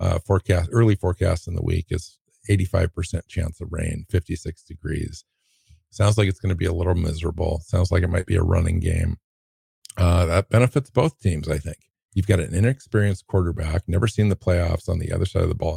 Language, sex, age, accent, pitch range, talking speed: English, male, 50-69, American, 85-100 Hz, 205 wpm